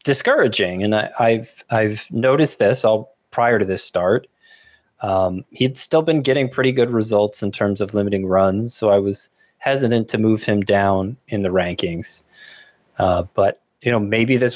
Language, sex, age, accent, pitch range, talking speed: English, male, 20-39, American, 105-140 Hz, 170 wpm